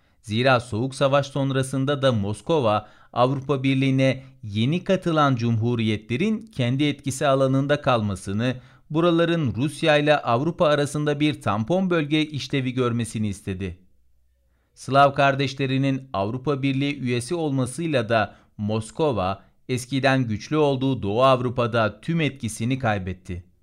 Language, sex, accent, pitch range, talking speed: Turkish, male, native, 110-155 Hz, 105 wpm